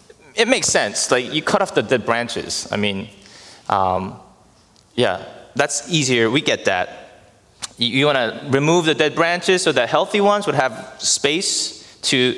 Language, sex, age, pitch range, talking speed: English, male, 20-39, 130-180 Hz, 165 wpm